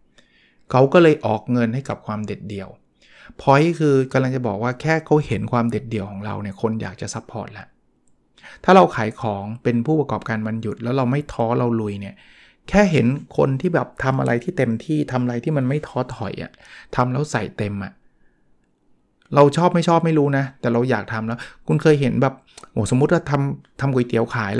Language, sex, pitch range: Thai, male, 110-140 Hz